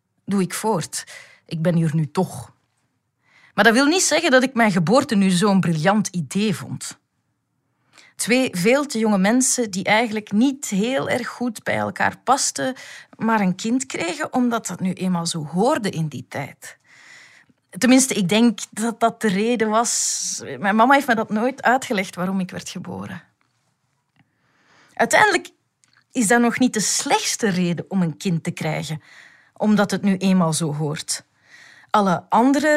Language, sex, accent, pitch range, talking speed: Dutch, female, Dutch, 185-255 Hz, 165 wpm